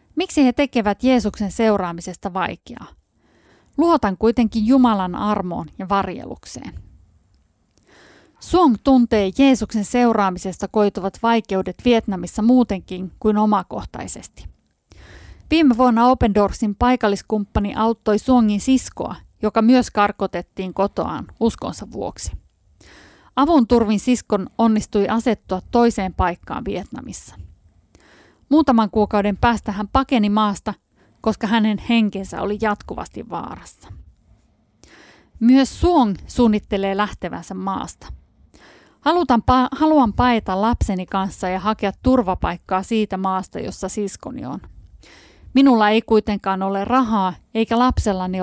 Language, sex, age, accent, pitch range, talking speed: Finnish, female, 30-49, native, 195-240 Hz, 100 wpm